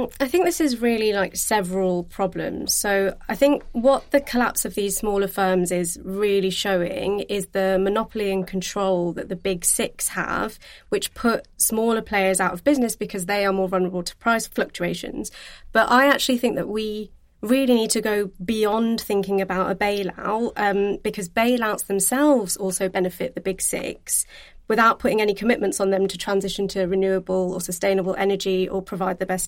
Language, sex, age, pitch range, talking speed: English, female, 20-39, 190-230 Hz, 175 wpm